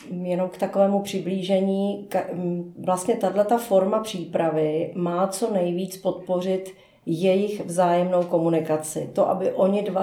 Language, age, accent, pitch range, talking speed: Czech, 40-59, native, 160-185 Hz, 115 wpm